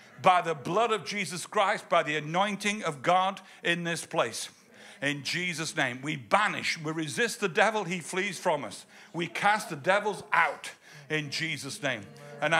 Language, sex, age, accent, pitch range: Japanese, male, 60-79, British, 165-220 Hz